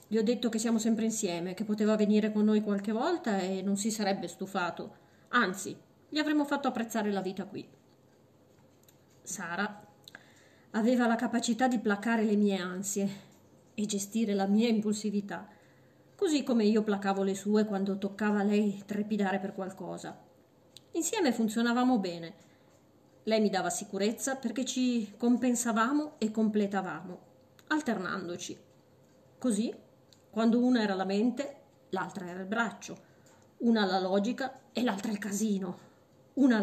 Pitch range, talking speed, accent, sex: 195-235 Hz, 140 wpm, native, female